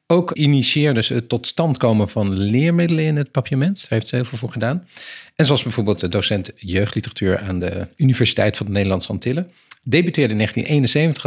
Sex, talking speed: male, 190 wpm